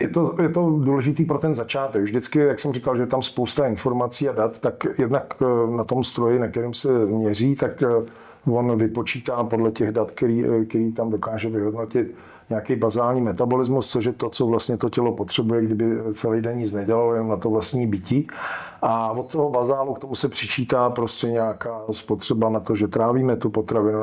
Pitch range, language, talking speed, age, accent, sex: 110-130 Hz, Czech, 190 wpm, 40-59, native, male